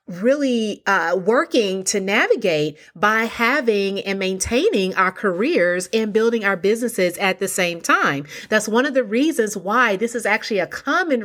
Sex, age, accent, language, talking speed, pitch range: female, 30-49, American, English, 160 wpm, 190-245 Hz